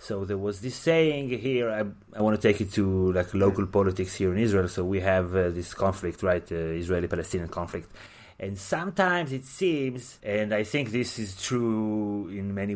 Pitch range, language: 100-135 Hz, English